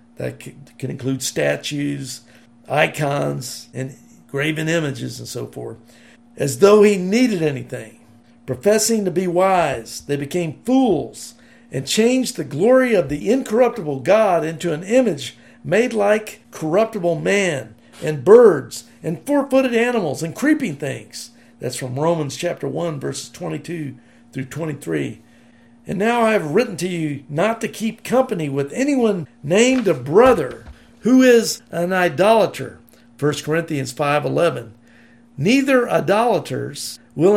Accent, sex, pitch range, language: American, male, 130-210 Hz, English